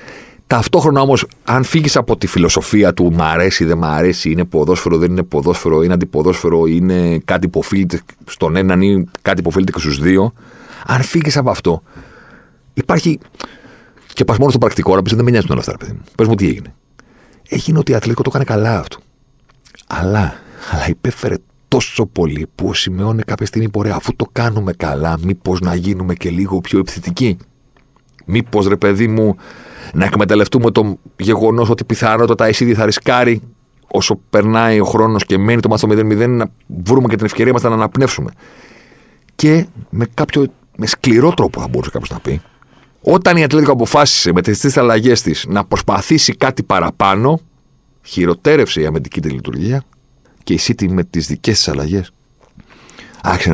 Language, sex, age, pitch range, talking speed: Greek, male, 40-59, 90-120 Hz, 170 wpm